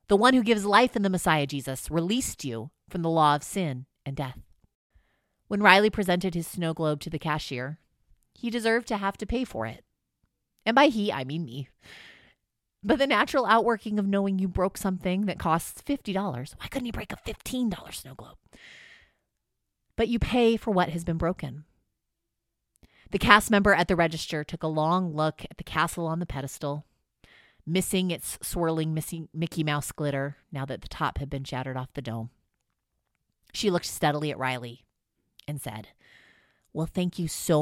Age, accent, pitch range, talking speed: 30-49, American, 140-190 Hz, 180 wpm